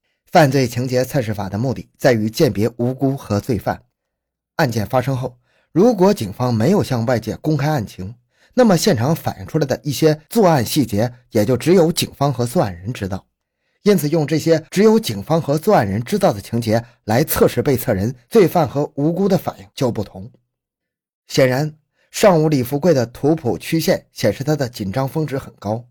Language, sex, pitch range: Chinese, male, 115-160 Hz